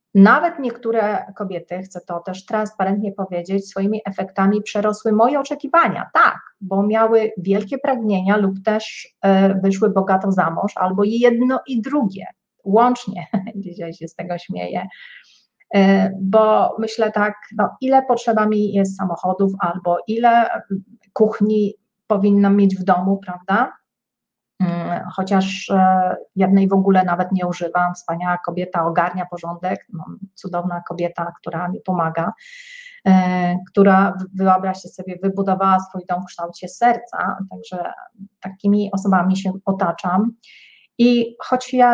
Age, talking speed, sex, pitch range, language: 30-49, 120 wpm, female, 185-220 Hz, Polish